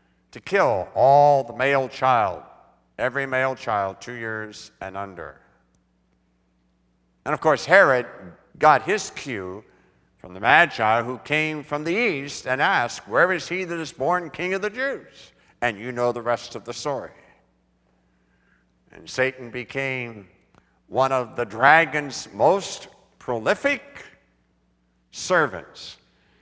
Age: 60-79